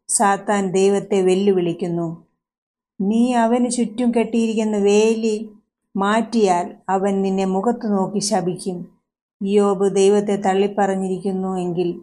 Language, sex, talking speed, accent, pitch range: Malayalam, female, 80 wpm, native, 190-225 Hz